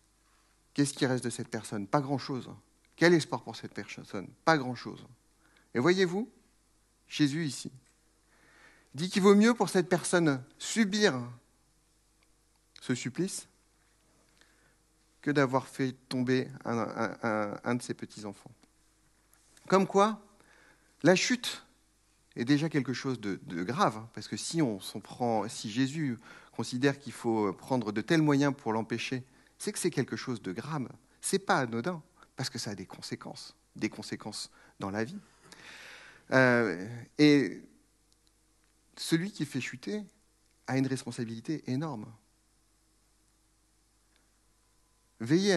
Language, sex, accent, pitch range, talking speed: French, male, French, 110-150 Hz, 135 wpm